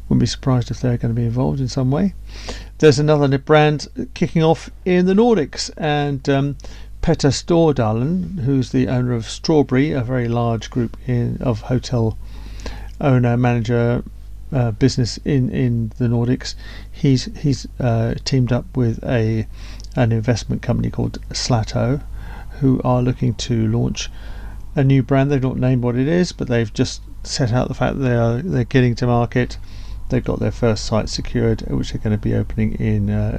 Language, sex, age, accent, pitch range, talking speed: English, male, 50-69, British, 110-140 Hz, 175 wpm